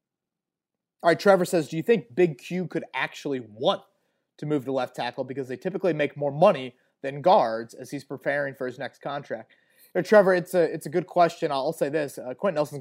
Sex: male